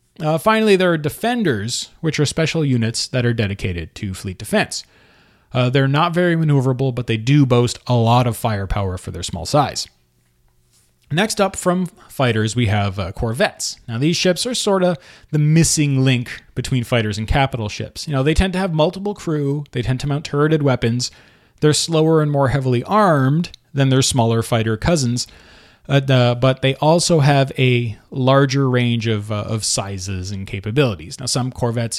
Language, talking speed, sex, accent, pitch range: English, 180 wpm, male, American, 110-150 Hz